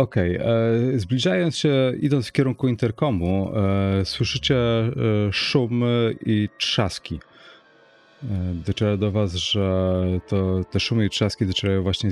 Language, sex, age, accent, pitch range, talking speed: Polish, male, 30-49, native, 90-120 Hz, 115 wpm